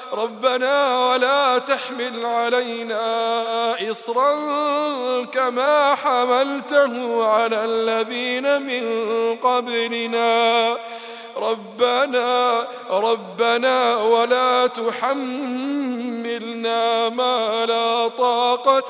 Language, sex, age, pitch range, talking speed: Arabic, male, 30-49, 235-275 Hz, 55 wpm